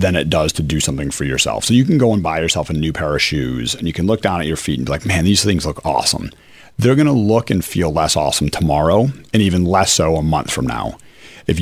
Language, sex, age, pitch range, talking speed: English, male, 40-59, 80-105 Hz, 280 wpm